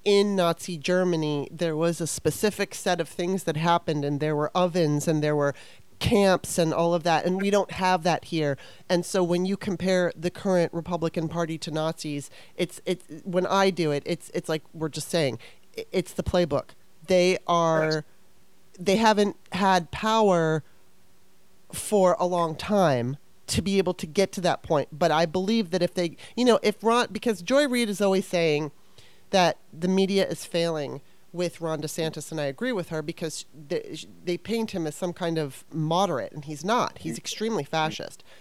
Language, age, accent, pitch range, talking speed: English, 30-49, American, 155-190 Hz, 185 wpm